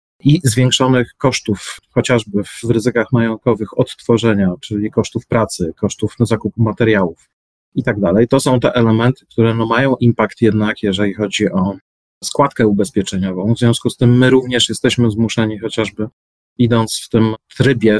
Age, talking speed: 40-59, 145 wpm